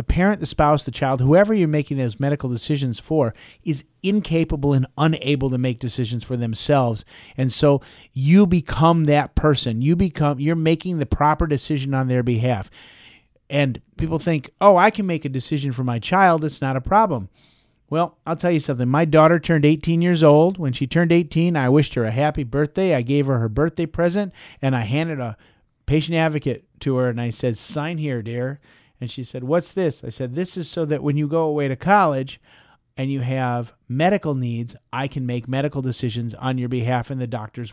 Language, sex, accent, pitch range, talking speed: English, male, American, 125-155 Hz, 205 wpm